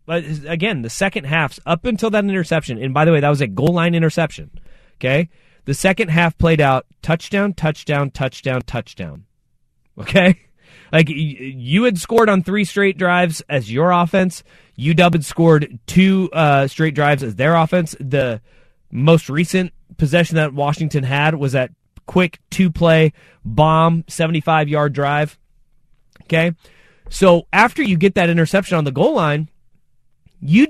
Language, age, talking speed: English, 30-49, 150 wpm